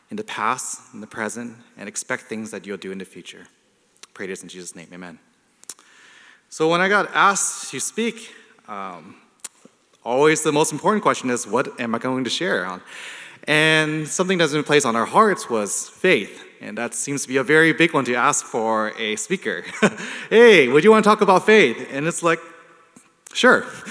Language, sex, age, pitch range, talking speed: English, male, 30-49, 120-160 Hz, 195 wpm